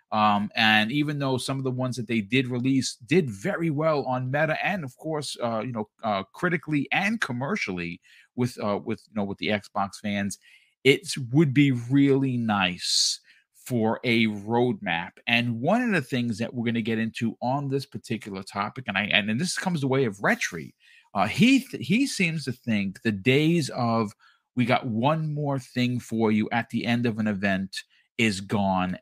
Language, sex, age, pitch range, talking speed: English, male, 40-59, 105-135 Hz, 195 wpm